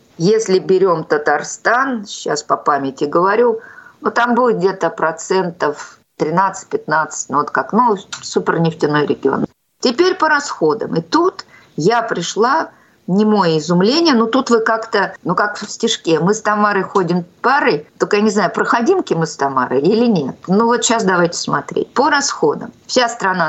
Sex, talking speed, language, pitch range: female, 160 wpm, Russian, 165-235 Hz